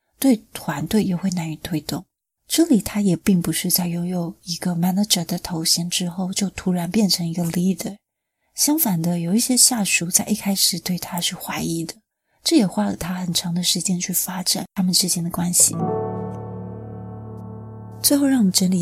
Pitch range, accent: 175-210 Hz, native